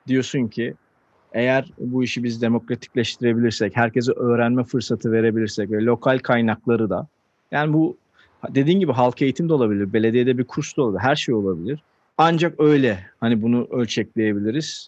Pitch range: 115-145 Hz